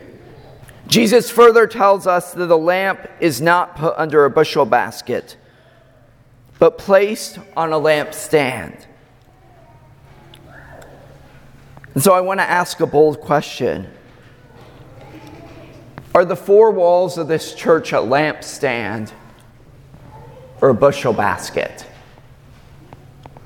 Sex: male